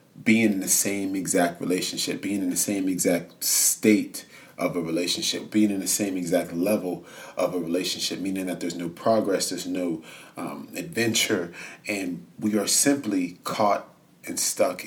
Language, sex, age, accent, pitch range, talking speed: English, male, 30-49, American, 85-105 Hz, 160 wpm